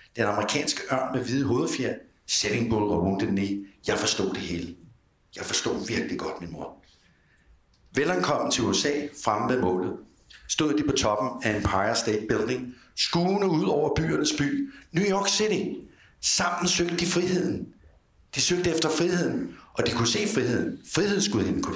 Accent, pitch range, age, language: native, 100-145 Hz, 60-79, Danish